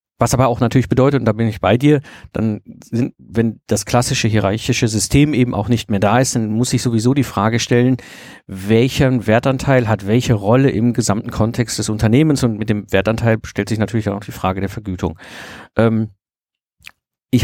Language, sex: German, male